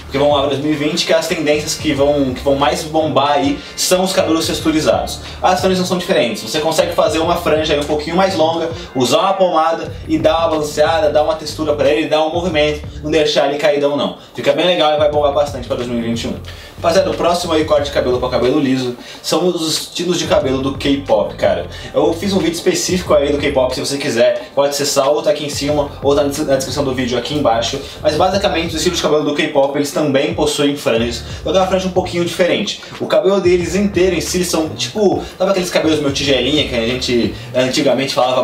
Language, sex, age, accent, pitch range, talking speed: Portuguese, male, 20-39, Brazilian, 140-170 Hz, 230 wpm